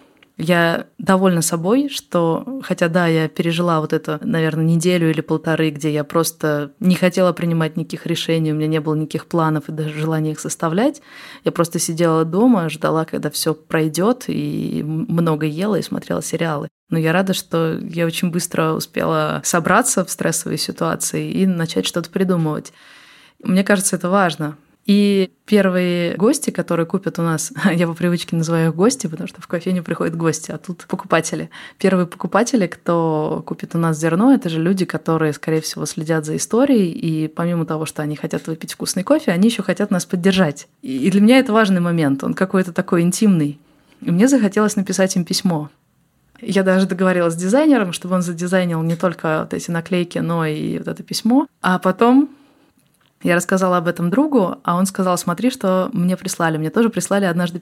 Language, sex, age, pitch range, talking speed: Russian, female, 20-39, 165-200 Hz, 180 wpm